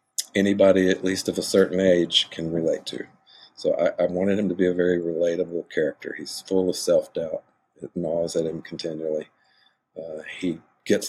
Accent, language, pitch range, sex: American, English, 85-95 Hz, male